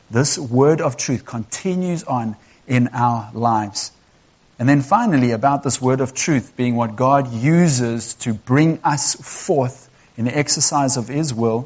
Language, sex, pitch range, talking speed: English, male, 125-175 Hz, 160 wpm